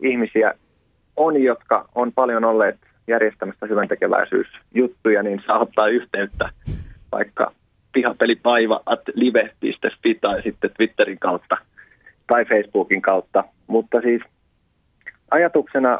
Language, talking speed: Finnish, 90 wpm